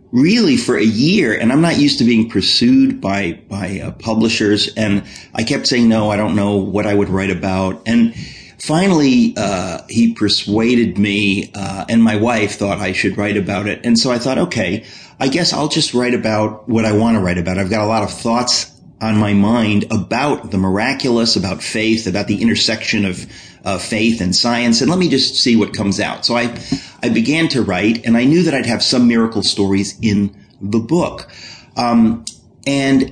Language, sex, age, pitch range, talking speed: English, male, 40-59, 100-130 Hz, 200 wpm